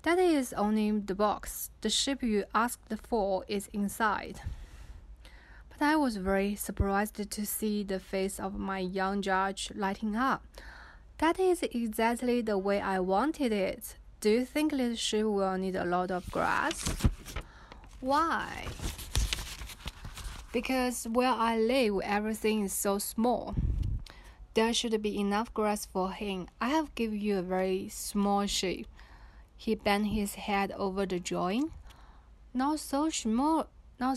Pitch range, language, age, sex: 195-235 Hz, Chinese, 20-39, female